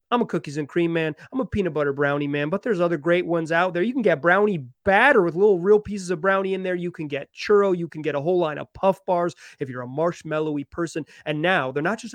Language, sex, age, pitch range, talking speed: English, male, 30-49, 155-195 Hz, 270 wpm